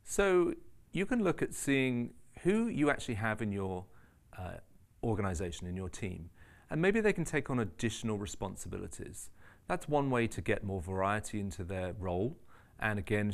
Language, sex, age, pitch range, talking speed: English, male, 40-59, 100-130 Hz, 165 wpm